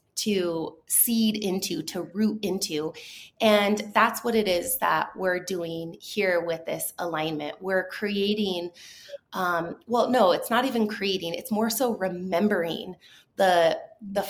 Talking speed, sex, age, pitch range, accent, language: 140 wpm, female, 20-39, 180-220 Hz, American, English